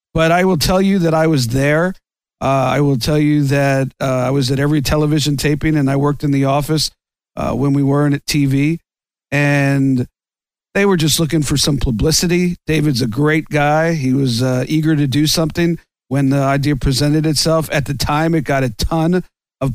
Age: 50-69